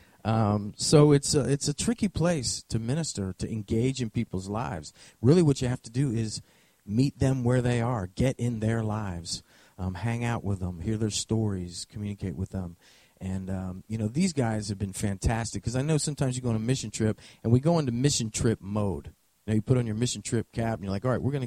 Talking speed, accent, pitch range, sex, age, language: 230 wpm, American, 100-125 Hz, male, 40-59, English